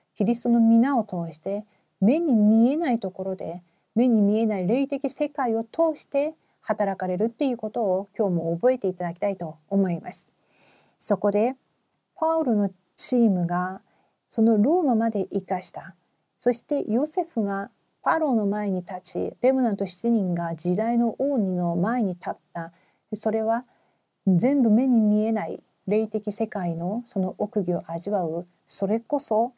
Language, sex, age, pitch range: Korean, female, 40-59, 180-230 Hz